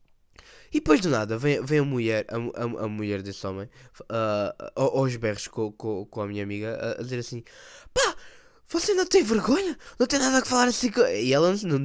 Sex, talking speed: male, 225 wpm